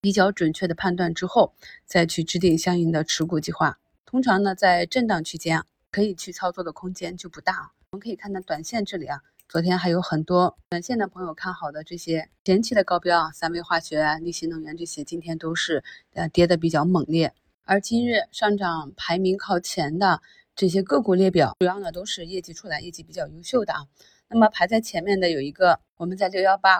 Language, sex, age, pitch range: Chinese, female, 20-39, 165-195 Hz